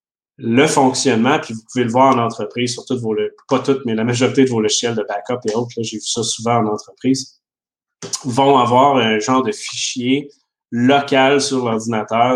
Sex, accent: male, Canadian